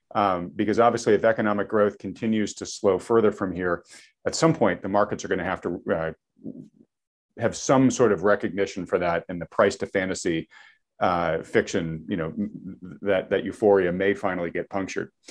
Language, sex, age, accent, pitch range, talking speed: English, male, 40-59, American, 95-110 Hz, 180 wpm